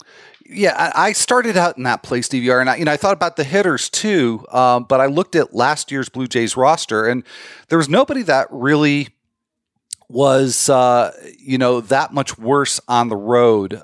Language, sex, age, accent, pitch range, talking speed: English, male, 40-59, American, 115-145 Hz, 190 wpm